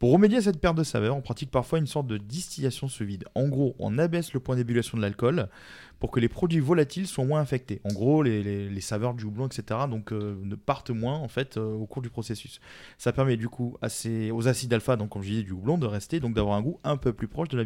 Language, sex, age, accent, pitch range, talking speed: French, male, 20-39, French, 115-155 Hz, 270 wpm